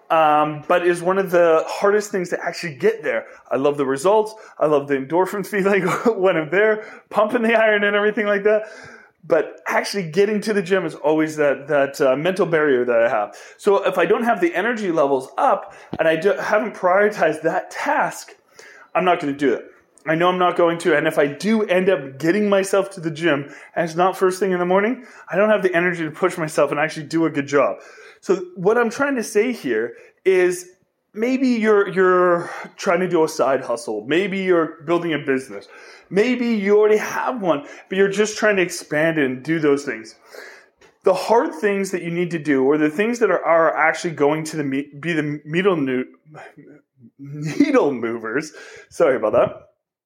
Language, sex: English, male